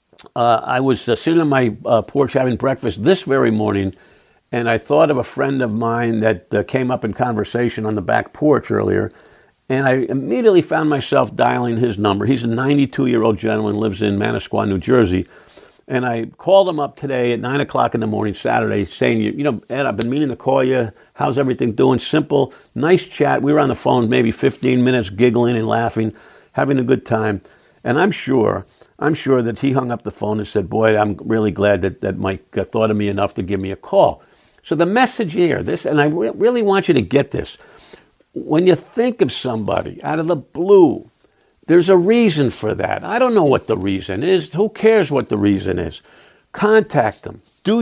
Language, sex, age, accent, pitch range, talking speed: English, male, 50-69, American, 110-145 Hz, 210 wpm